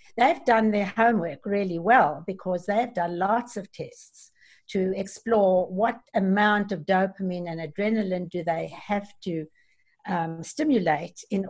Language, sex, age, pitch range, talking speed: English, female, 60-79, 175-215 Hz, 140 wpm